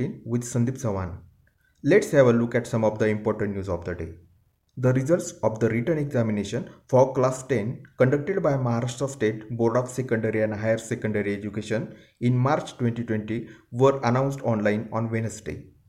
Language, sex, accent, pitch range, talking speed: Marathi, male, native, 110-135 Hz, 165 wpm